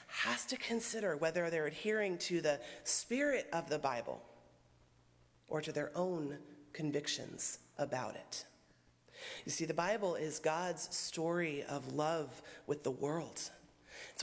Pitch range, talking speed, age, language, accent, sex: 145-180 Hz, 135 wpm, 30-49, English, American, female